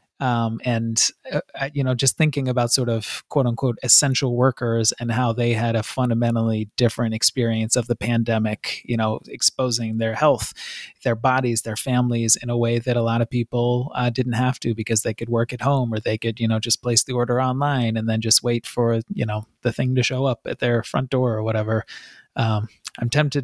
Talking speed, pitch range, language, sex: 215 wpm, 115-130 Hz, English, male